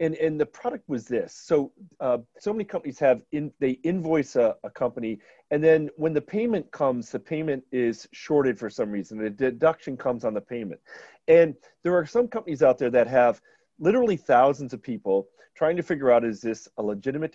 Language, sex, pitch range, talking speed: English, male, 120-155 Hz, 200 wpm